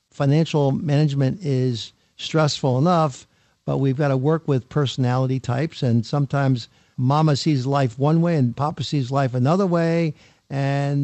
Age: 50-69